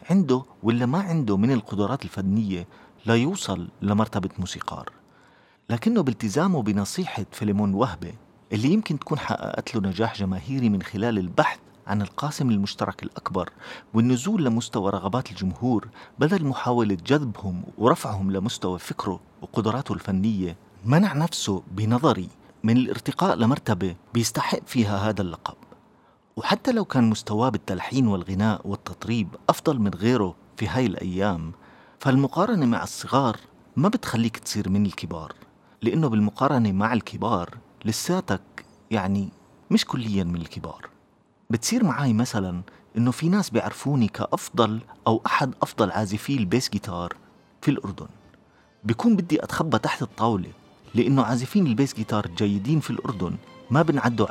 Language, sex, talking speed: Arabic, male, 125 wpm